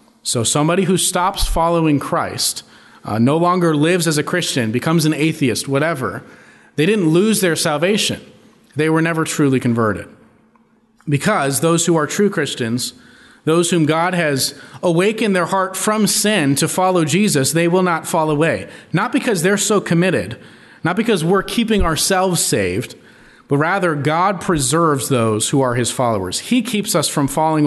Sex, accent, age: male, American, 30-49